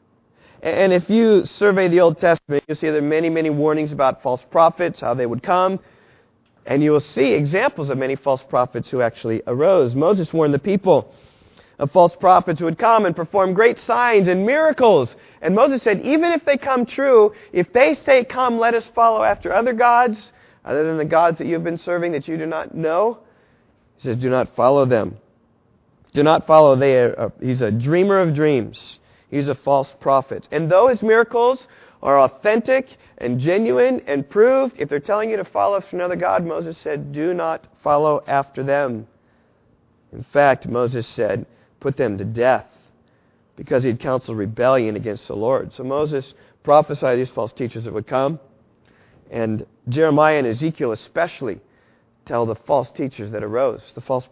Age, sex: 40-59, male